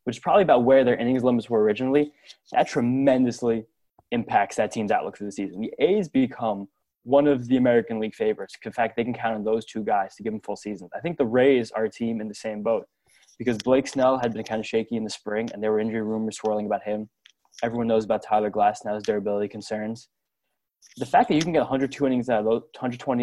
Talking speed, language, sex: 240 wpm, English, male